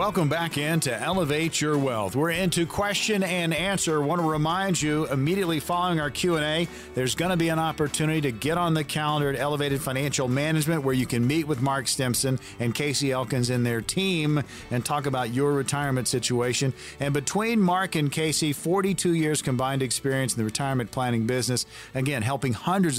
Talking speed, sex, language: 190 wpm, male, English